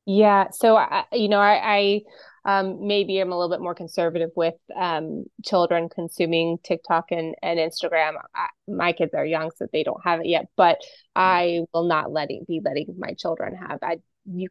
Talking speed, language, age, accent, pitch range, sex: 195 wpm, English, 20-39, American, 170-195 Hz, female